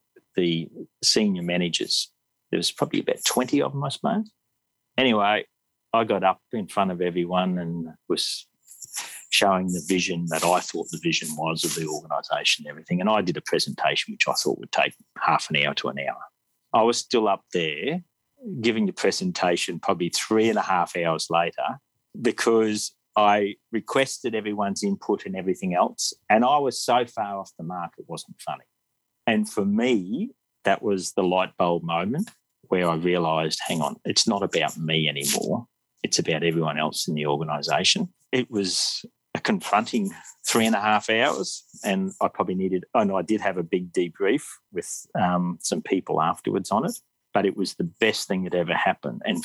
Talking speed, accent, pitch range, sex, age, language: 180 wpm, Australian, 85-110 Hz, male, 40-59, English